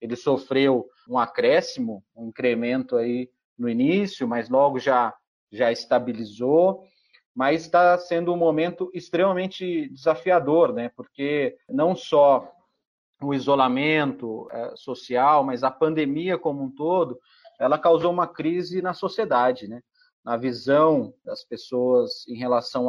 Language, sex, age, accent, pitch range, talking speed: Portuguese, male, 30-49, Brazilian, 125-180 Hz, 125 wpm